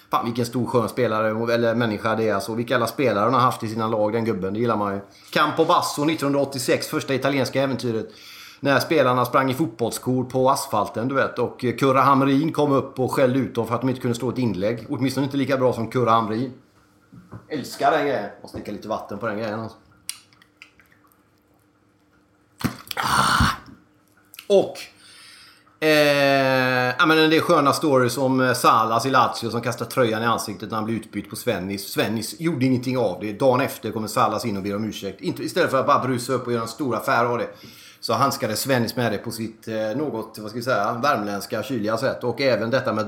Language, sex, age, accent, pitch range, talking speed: Swedish, male, 30-49, native, 110-135 Hz, 200 wpm